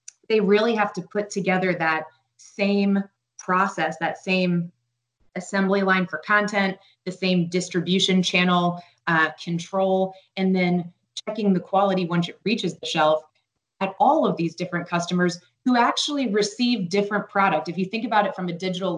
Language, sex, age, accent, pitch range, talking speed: English, female, 20-39, American, 160-195 Hz, 160 wpm